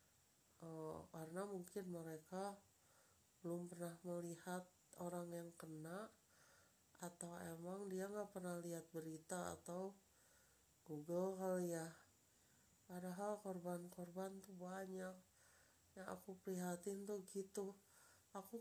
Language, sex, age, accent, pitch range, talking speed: Indonesian, female, 30-49, native, 170-195 Hz, 100 wpm